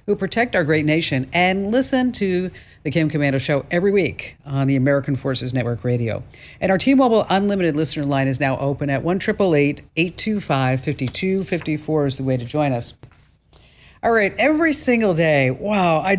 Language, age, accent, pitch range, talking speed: English, 50-69, American, 135-190 Hz, 170 wpm